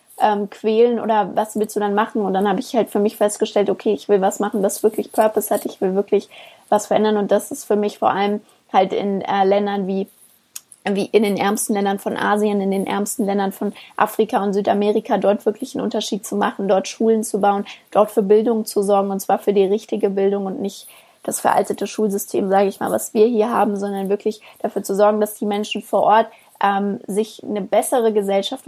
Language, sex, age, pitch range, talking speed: German, female, 20-39, 200-225 Hz, 220 wpm